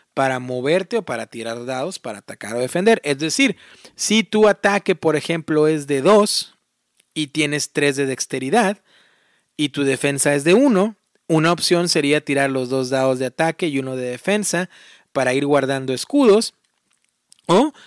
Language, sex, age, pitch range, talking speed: Spanish, male, 40-59, 135-175 Hz, 165 wpm